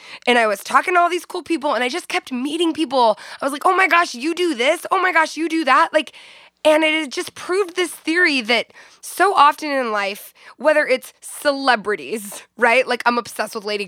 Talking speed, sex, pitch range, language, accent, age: 220 wpm, female, 220-310 Hz, English, American, 20-39